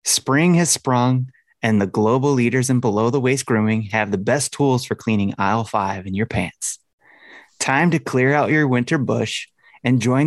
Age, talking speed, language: 30-49, 175 wpm, English